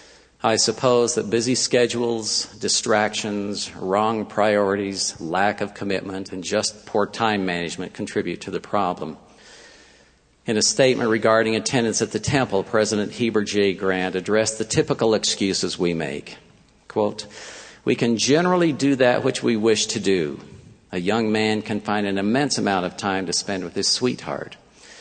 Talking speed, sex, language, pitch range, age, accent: 150 wpm, male, English, 95-115 Hz, 50-69, American